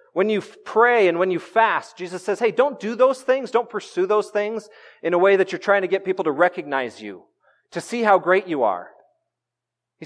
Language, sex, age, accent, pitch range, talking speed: English, male, 30-49, American, 140-200 Hz, 220 wpm